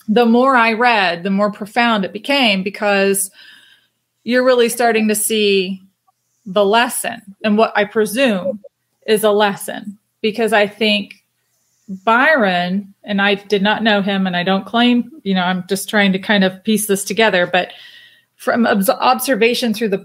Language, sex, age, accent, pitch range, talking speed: English, female, 30-49, American, 195-230 Hz, 160 wpm